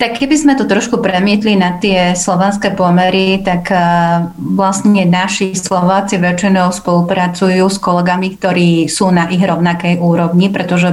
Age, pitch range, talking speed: 30-49, 175-200 Hz, 135 wpm